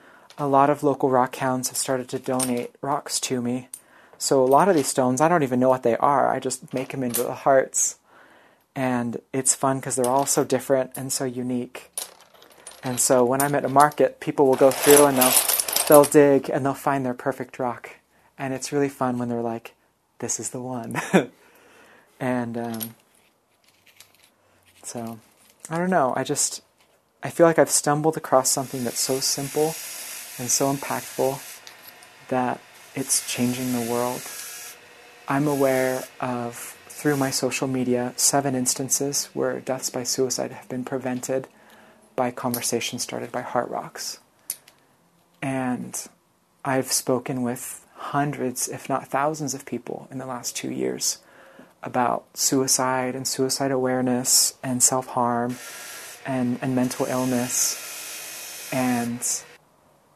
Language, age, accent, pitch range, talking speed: English, 30-49, American, 125-140 Hz, 150 wpm